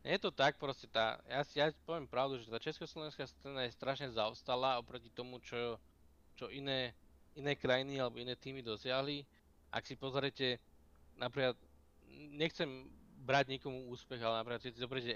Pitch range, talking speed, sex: 110-130 Hz, 160 wpm, male